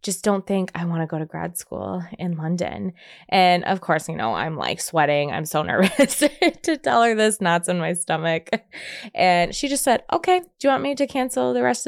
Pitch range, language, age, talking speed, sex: 170-235 Hz, English, 20-39, 220 wpm, female